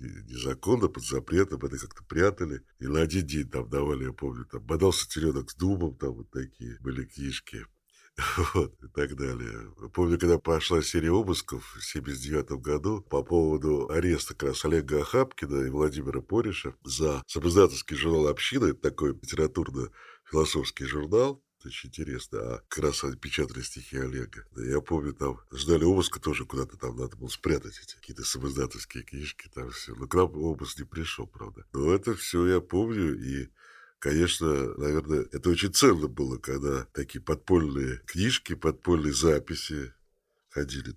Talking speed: 150 wpm